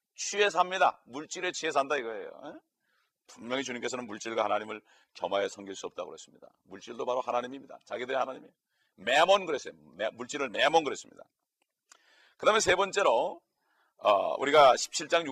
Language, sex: Korean, male